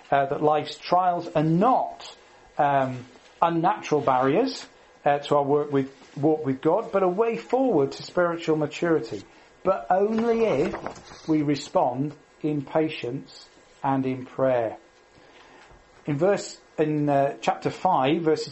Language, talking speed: English, 125 wpm